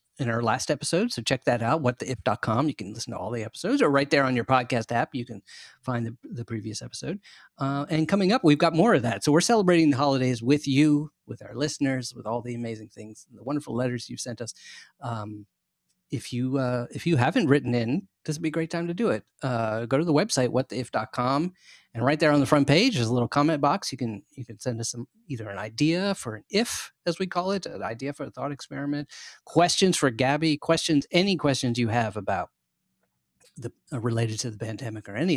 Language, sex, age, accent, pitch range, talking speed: English, male, 40-59, American, 120-150 Hz, 230 wpm